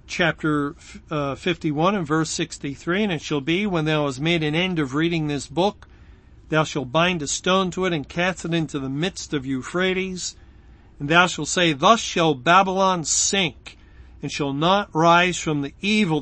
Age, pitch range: 50-69, 150-195 Hz